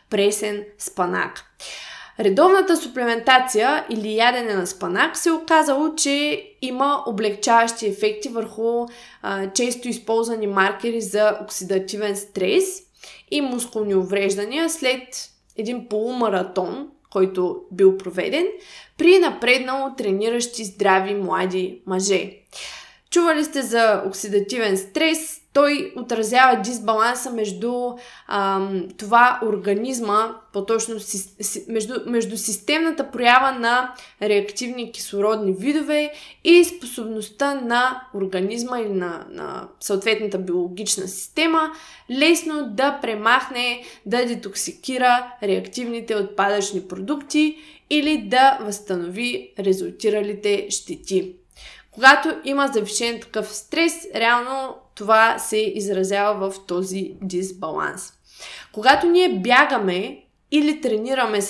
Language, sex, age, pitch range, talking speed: Bulgarian, female, 20-39, 200-270 Hz, 100 wpm